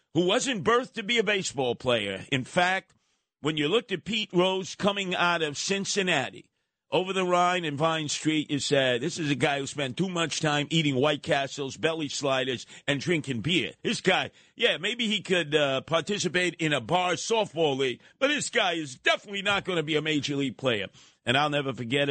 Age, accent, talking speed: 50-69, American, 205 wpm